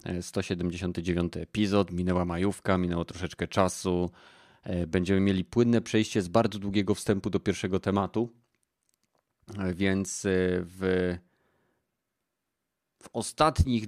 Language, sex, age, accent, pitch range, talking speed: Polish, male, 30-49, native, 90-105 Hz, 95 wpm